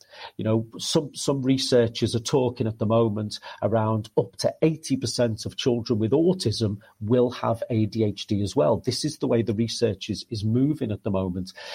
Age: 40-59